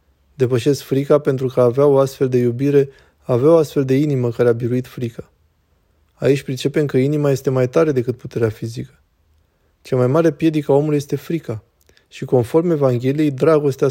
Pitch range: 120-140 Hz